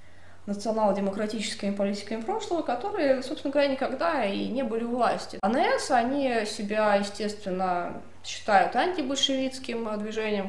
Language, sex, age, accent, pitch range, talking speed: Russian, female, 20-39, native, 185-250 Hz, 110 wpm